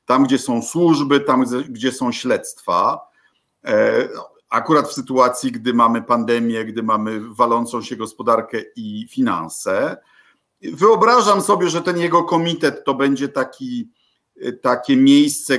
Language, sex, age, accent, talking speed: Polish, male, 50-69, native, 120 wpm